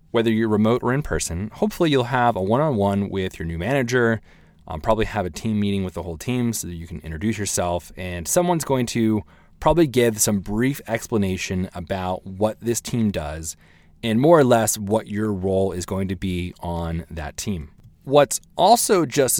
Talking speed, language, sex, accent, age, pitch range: 190 wpm, English, male, American, 30-49, 95-120 Hz